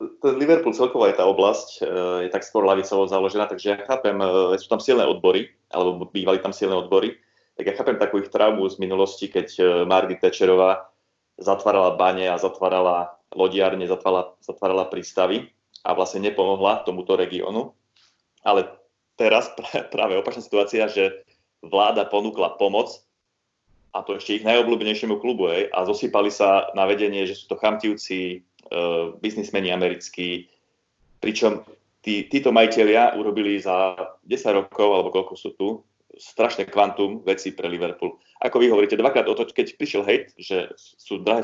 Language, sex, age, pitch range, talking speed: Slovak, male, 30-49, 95-140 Hz, 150 wpm